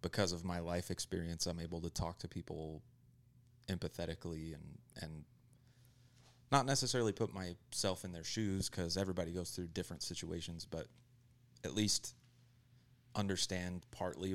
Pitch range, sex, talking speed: 85-120 Hz, male, 135 wpm